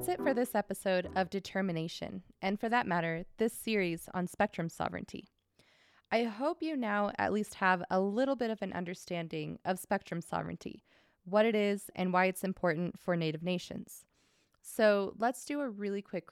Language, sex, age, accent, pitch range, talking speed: English, female, 20-39, American, 180-215 Hz, 175 wpm